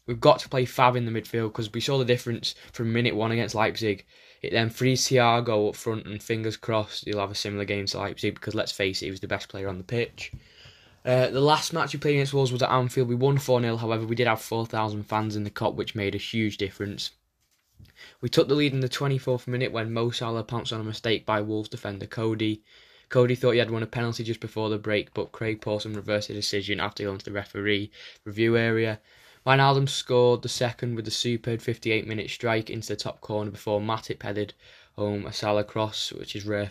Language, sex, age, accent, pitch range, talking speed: English, male, 10-29, British, 105-120 Hz, 230 wpm